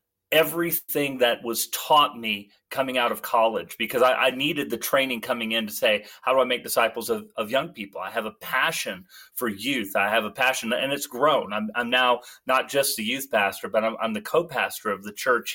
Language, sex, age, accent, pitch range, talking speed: English, male, 30-49, American, 120-165 Hz, 220 wpm